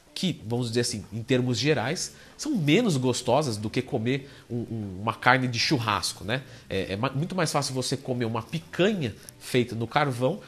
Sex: male